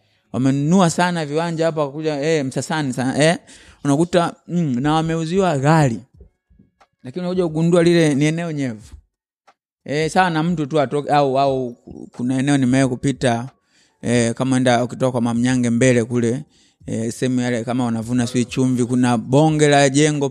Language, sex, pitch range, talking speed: Swahili, male, 120-155 Hz, 155 wpm